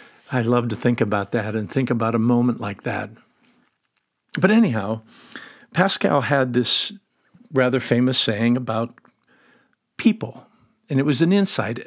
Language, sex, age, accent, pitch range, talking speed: English, male, 50-69, American, 120-185 Hz, 140 wpm